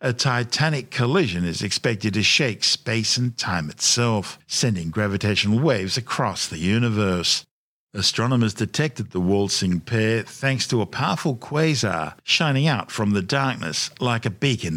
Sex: male